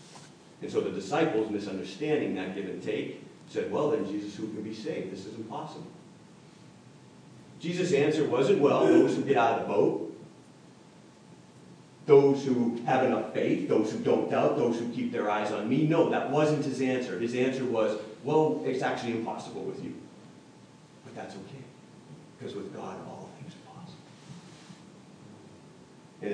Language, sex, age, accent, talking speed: English, male, 40-59, American, 165 wpm